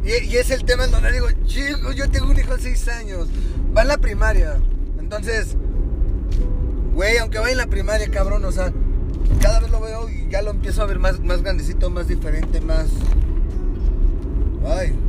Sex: male